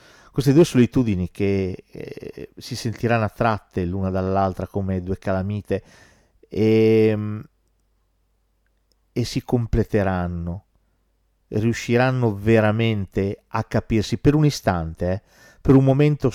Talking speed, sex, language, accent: 105 wpm, male, Italian, native